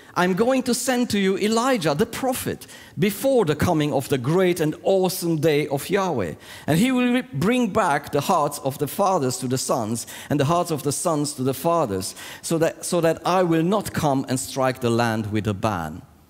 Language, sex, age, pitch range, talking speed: English, male, 50-69, 115-165 Hz, 210 wpm